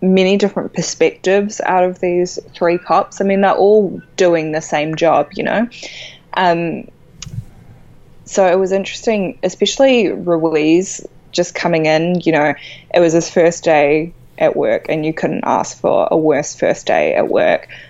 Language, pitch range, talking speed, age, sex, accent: English, 155-185 Hz, 160 wpm, 20-39, female, Australian